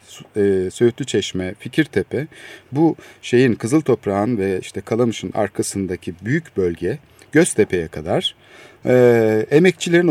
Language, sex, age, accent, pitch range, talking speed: Turkish, male, 50-69, native, 100-130 Hz, 85 wpm